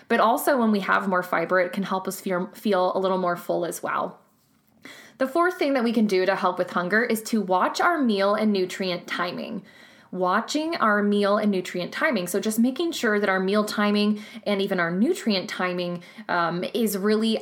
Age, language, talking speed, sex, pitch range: 20-39, English, 205 wpm, female, 190-225 Hz